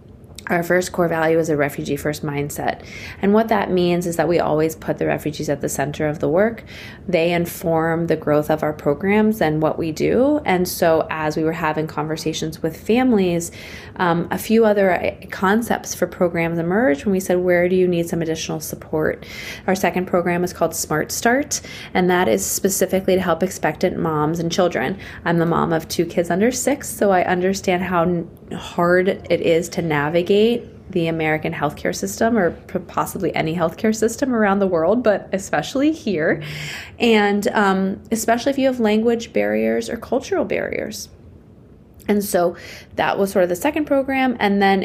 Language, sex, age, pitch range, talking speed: English, female, 20-39, 165-205 Hz, 180 wpm